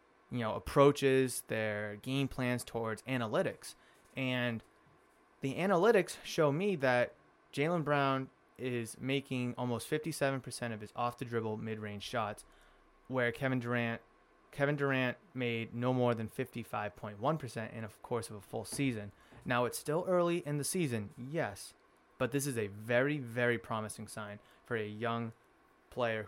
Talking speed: 150 wpm